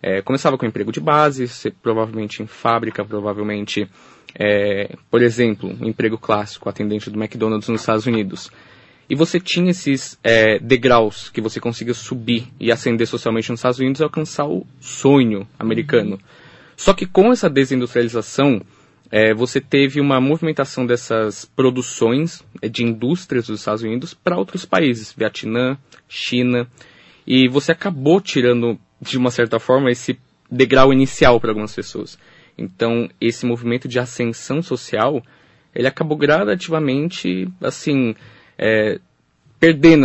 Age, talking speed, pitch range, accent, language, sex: 20-39, 130 wpm, 110-140 Hz, Brazilian, Portuguese, male